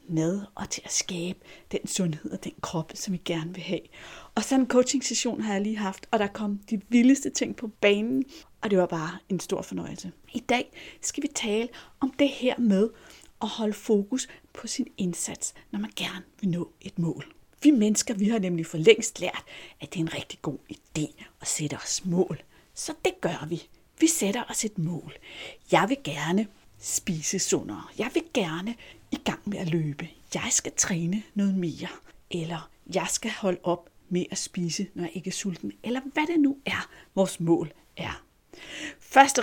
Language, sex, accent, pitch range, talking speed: Danish, female, native, 165-215 Hz, 195 wpm